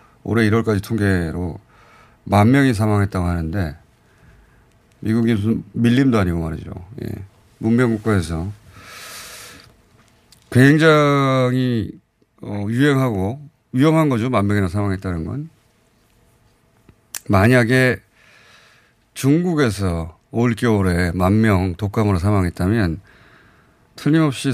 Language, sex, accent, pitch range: Korean, male, native, 100-130 Hz